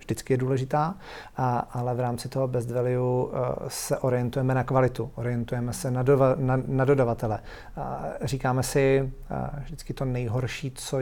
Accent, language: native, Czech